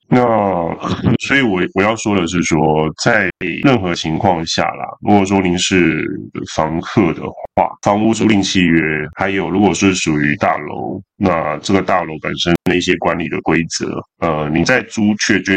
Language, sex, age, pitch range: Chinese, male, 20-39, 80-100 Hz